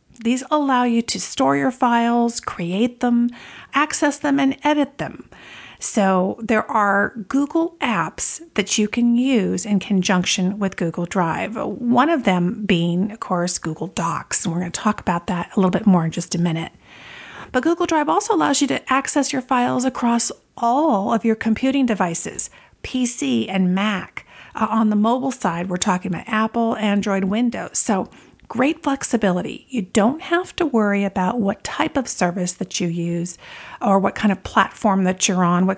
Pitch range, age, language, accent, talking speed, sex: 185-255 Hz, 50-69, English, American, 180 wpm, female